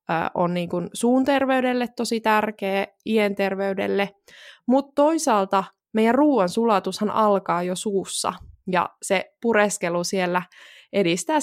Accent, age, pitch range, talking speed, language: native, 20-39, 190-245 Hz, 105 wpm, Finnish